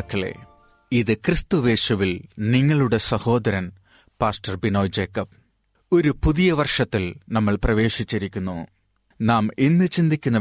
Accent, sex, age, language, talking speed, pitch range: native, male, 30-49, Malayalam, 90 wpm, 105-140 Hz